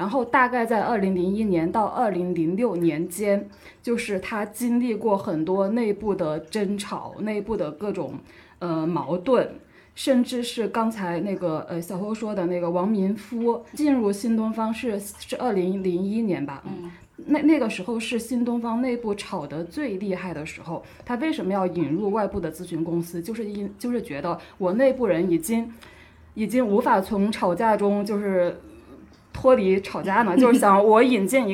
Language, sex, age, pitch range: Chinese, female, 20-39, 180-230 Hz